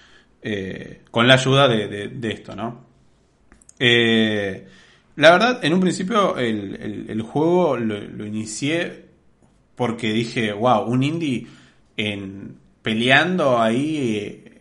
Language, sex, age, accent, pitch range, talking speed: Spanish, male, 20-39, Argentinian, 110-135 Hz, 110 wpm